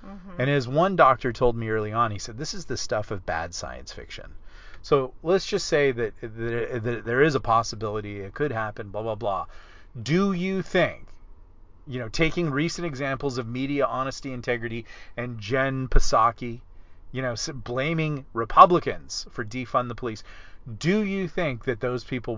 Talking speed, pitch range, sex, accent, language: 175 wpm, 105-135 Hz, male, American, English